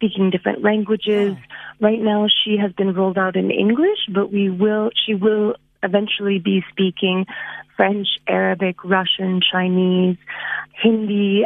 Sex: female